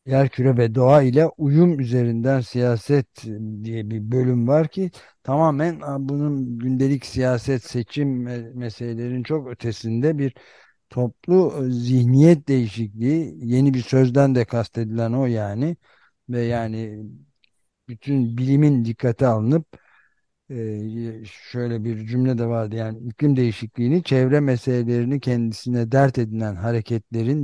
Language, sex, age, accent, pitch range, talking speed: Turkish, male, 60-79, native, 115-140 Hz, 115 wpm